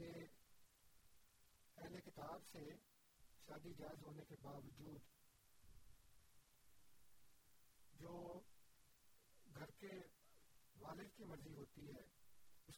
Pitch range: 130-170 Hz